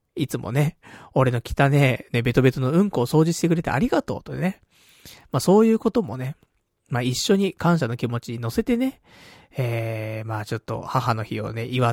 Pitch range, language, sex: 115-195 Hz, Japanese, male